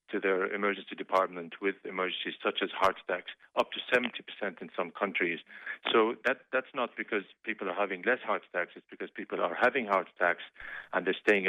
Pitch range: 90-100 Hz